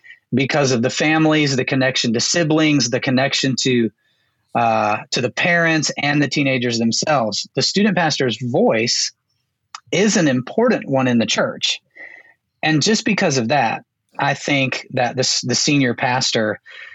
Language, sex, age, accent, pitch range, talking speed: English, male, 30-49, American, 125-160 Hz, 150 wpm